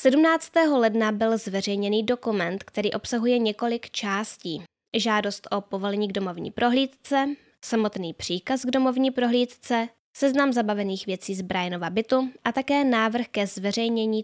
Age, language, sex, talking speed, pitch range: 10-29, Czech, female, 130 wpm, 200-245 Hz